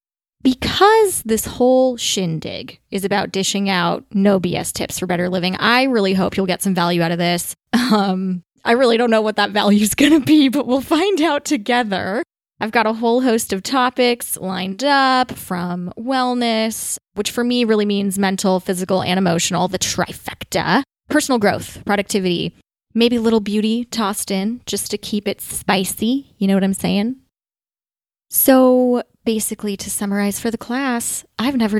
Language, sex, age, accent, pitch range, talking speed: English, female, 20-39, American, 190-240 Hz, 170 wpm